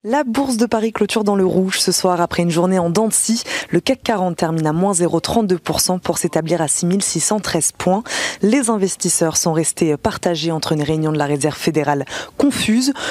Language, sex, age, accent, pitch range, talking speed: French, female, 20-39, French, 155-200 Hz, 190 wpm